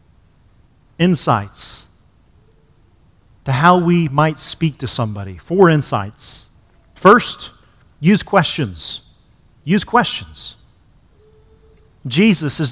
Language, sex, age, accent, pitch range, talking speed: English, male, 40-59, American, 130-180 Hz, 80 wpm